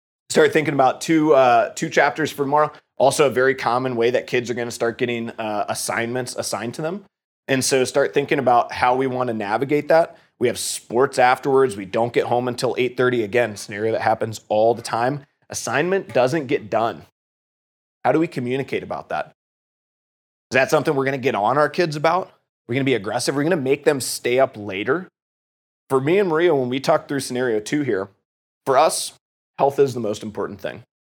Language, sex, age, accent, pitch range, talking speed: English, male, 20-39, American, 105-135 Hz, 205 wpm